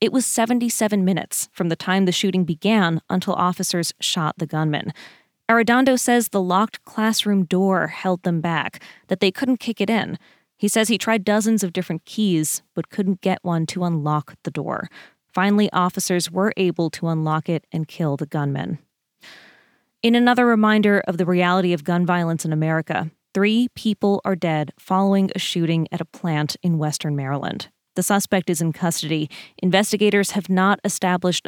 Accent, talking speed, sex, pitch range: American, 170 wpm, female, 165-205 Hz